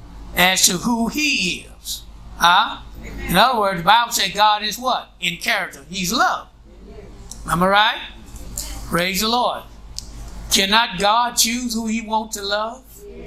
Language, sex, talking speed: English, male, 150 wpm